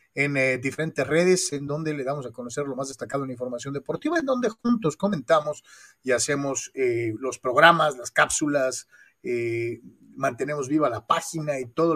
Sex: male